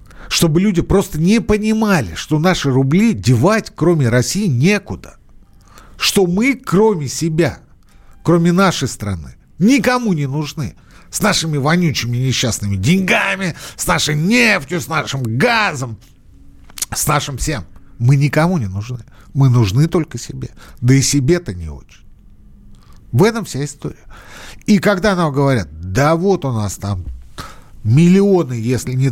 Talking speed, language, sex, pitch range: 135 wpm, Russian, male, 100-160 Hz